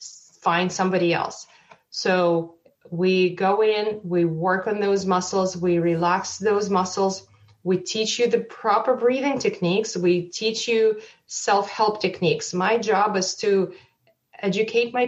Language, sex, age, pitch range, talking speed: English, female, 30-49, 180-205 Hz, 135 wpm